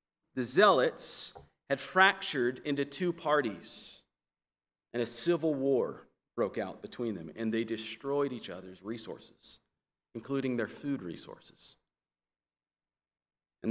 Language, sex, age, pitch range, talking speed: English, male, 40-59, 105-140 Hz, 115 wpm